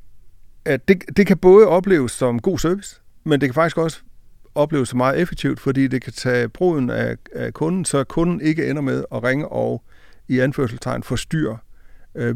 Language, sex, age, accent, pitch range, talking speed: Danish, male, 60-79, native, 115-145 Hz, 180 wpm